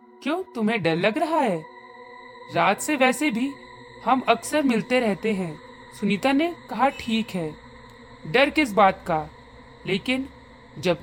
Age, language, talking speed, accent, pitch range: 40-59, Hindi, 140 wpm, native, 175-290 Hz